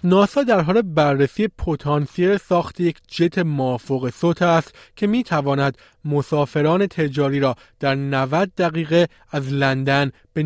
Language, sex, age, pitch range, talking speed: Persian, male, 30-49, 150-185 Hz, 130 wpm